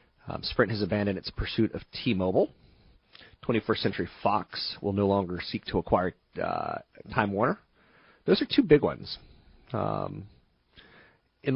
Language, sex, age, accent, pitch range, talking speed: English, male, 30-49, American, 95-120 Hz, 140 wpm